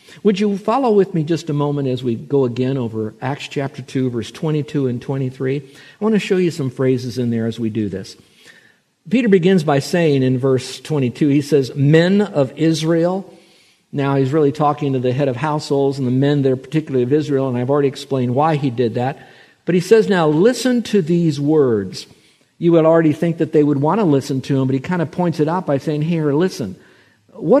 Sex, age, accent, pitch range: male, 50-69, American, 135-175 Hz